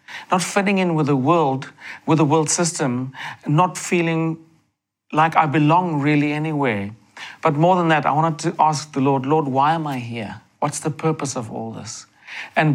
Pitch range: 135-160 Hz